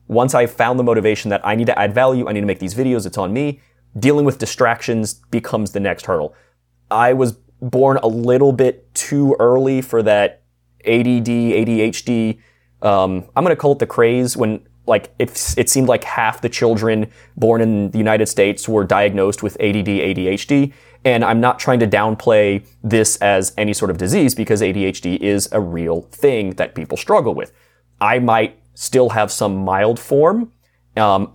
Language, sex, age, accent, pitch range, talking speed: English, male, 20-39, American, 95-120 Hz, 185 wpm